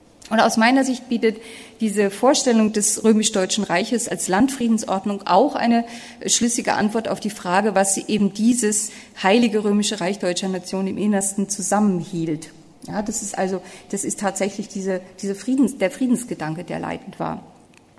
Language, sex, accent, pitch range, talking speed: German, female, German, 195-235 Hz, 155 wpm